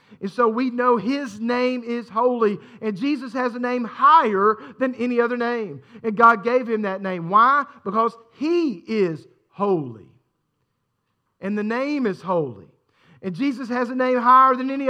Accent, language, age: American, English, 50-69